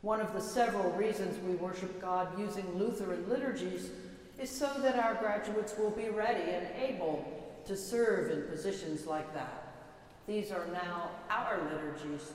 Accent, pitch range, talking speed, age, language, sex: American, 180-245 Hz, 155 wpm, 60-79, English, female